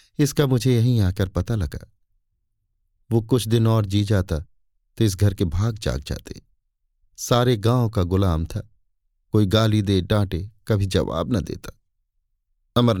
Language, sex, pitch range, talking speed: Hindi, male, 105-155 Hz, 150 wpm